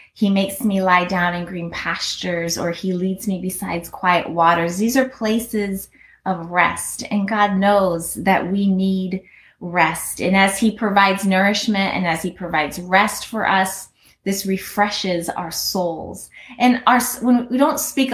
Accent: American